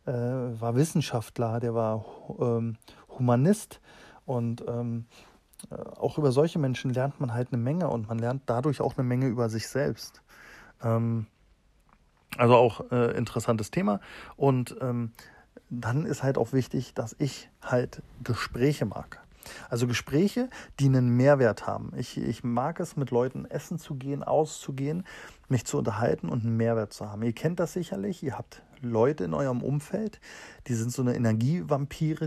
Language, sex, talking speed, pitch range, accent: German, male, 155 wpm, 115-140 Hz, German